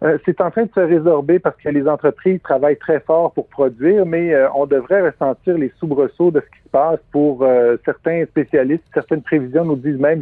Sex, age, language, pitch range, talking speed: male, 50-69, French, 135-165 Hz, 200 wpm